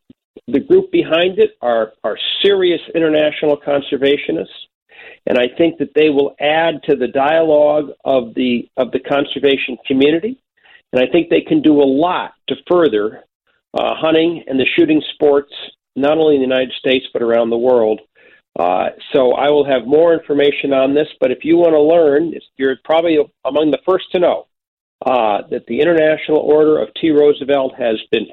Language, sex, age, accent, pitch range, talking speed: English, male, 50-69, American, 130-170 Hz, 175 wpm